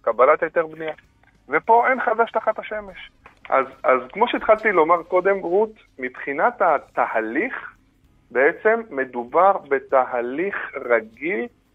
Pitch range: 120-195 Hz